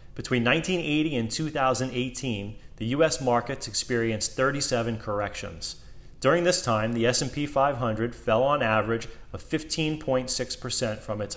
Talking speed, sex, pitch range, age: 120 wpm, male, 110-130 Hz, 30-49